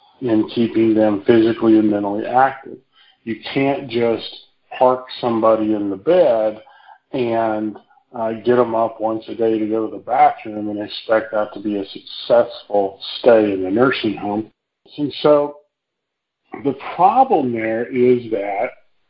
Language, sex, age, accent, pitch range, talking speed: English, male, 40-59, American, 110-130 Hz, 150 wpm